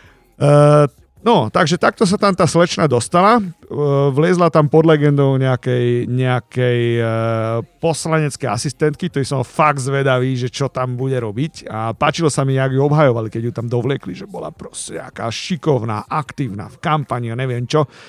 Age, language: 50-69, Slovak